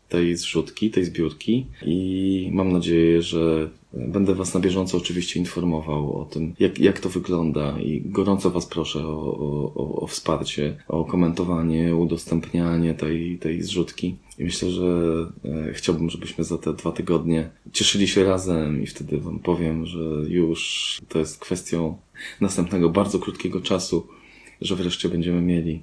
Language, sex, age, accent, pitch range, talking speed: Polish, male, 20-39, native, 80-95 Hz, 145 wpm